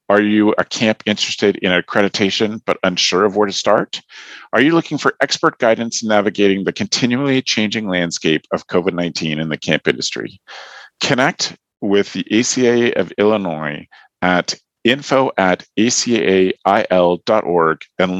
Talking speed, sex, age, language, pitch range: 130 wpm, male, 40-59, English, 90-120 Hz